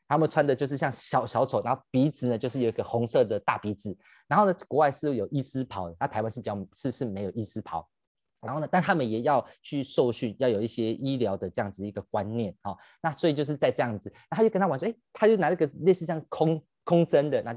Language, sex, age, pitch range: Chinese, male, 20-39, 105-145 Hz